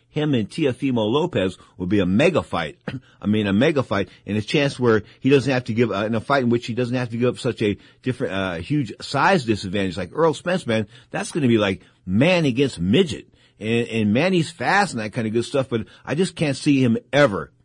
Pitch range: 115-140 Hz